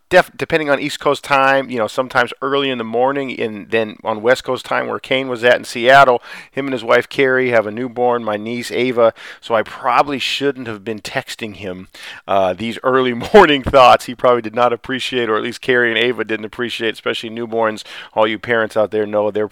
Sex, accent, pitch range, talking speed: male, American, 110-140 Hz, 215 wpm